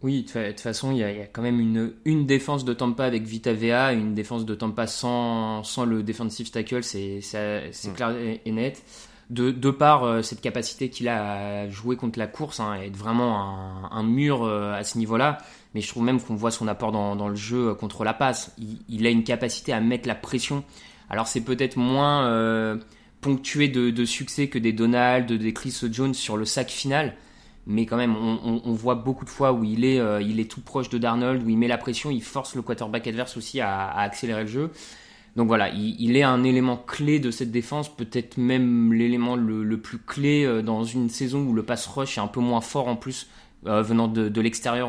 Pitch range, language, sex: 110-125 Hz, French, male